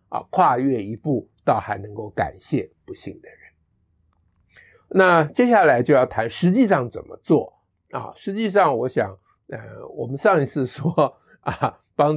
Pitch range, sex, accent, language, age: 110-160 Hz, male, American, Chinese, 50-69